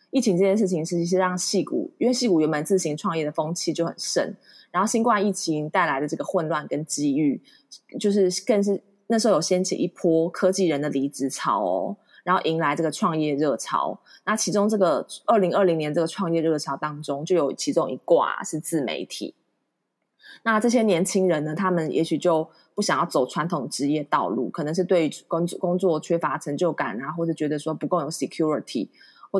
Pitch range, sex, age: 150-195 Hz, female, 20-39